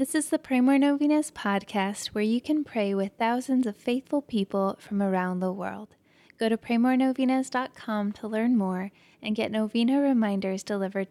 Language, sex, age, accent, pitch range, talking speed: English, female, 20-39, American, 185-235 Hz, 165 wpm